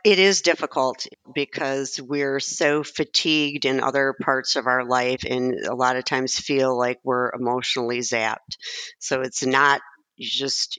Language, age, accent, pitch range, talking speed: English, 50-69, American, 125-150 Hz, 150 wpm